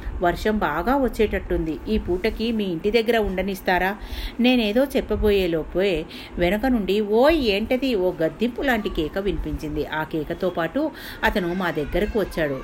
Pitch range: 170-230 Hz